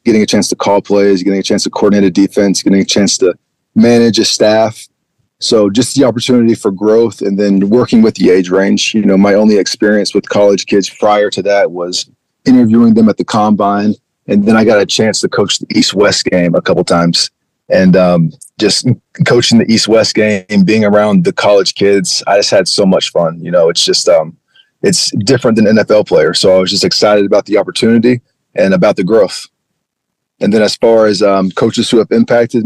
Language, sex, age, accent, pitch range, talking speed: English, male, 30-49, American, 100-115 Hz, 215 wpm